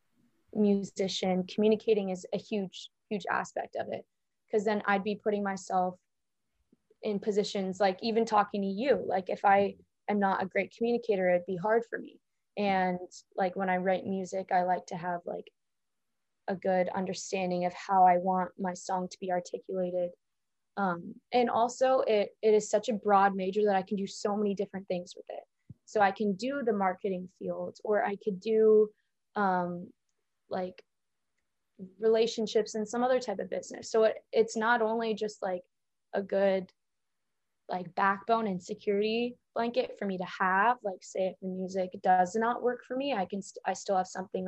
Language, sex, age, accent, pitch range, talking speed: English, female, 20-39, American, 185-215 Hz, 175 wpm